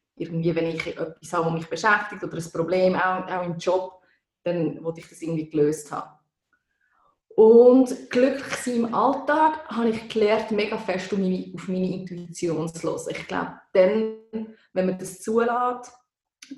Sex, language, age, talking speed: female, English, 20-39, 160 wpm